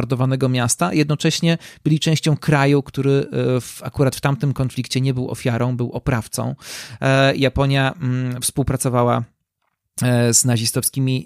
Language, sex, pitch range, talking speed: Polish, male, 125-155 Hz, 115 wpm